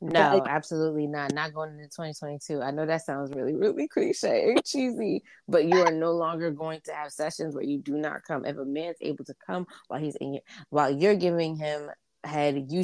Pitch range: 145-185 Hz